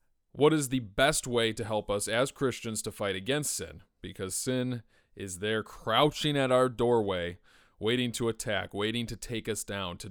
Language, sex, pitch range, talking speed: English, male, 105-135 Hz, 185 wpm